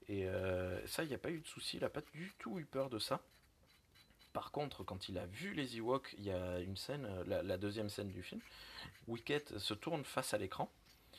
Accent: French